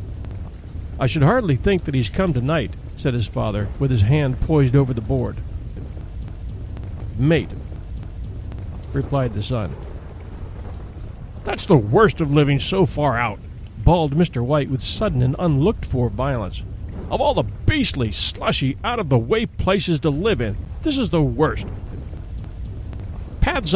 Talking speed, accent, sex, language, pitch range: 135 wpm, American, male, English, 95-155 Hz